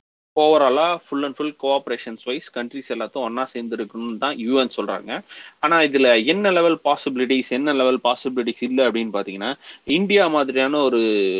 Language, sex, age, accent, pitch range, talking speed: Tamil, male, 30-49, native, 125-155 Hz, 140 wpm